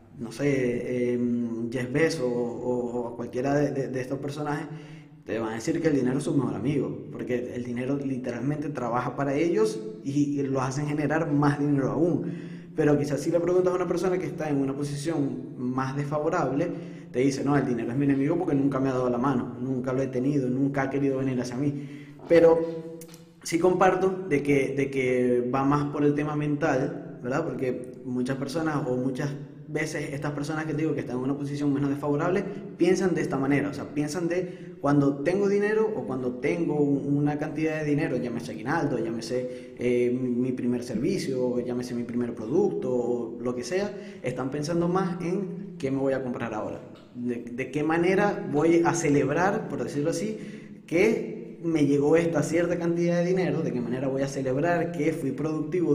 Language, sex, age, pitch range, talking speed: Spanish, male, 20-39, 125-160 Hz, 195 wpm